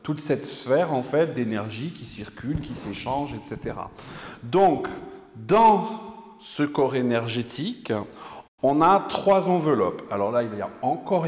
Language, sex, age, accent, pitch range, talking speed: French, male, 40-59, French, 115-180 Hz, 135 wpm